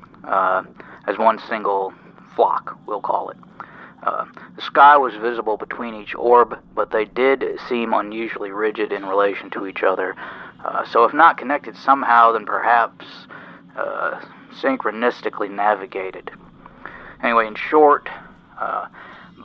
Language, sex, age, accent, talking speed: English, male, 40-59, American, 130 wpm